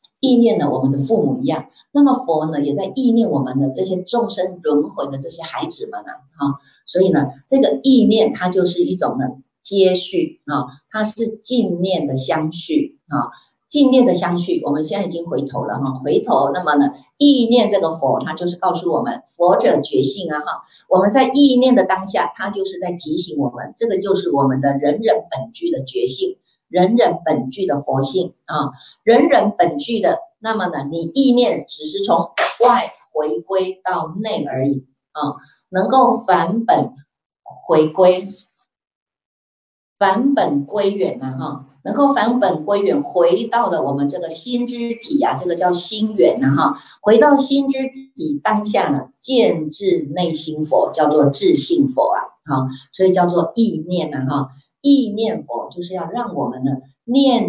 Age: 50-69